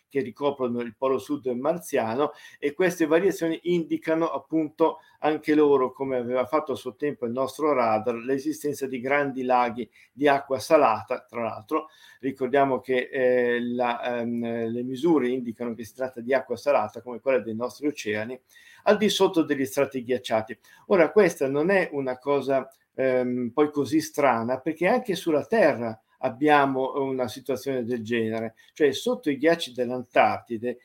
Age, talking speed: 50-69, 155 wpm